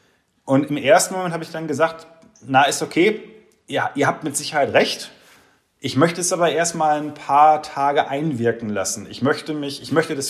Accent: German